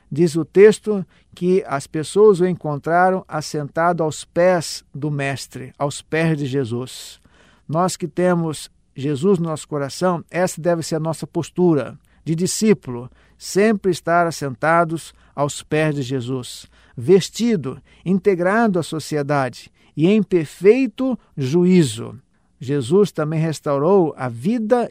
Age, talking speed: 50-69, 125 wpm